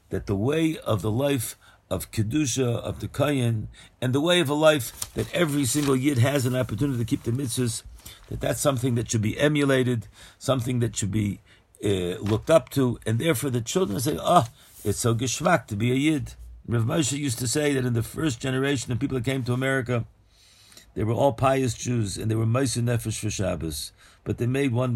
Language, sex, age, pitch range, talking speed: English, male, 50-69, 105-135 Hz, 215 wpm